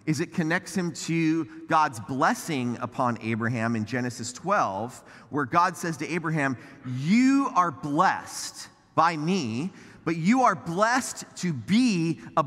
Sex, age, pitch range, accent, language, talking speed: male, 30-49, 150-200 Hz, American, English, 140 wpm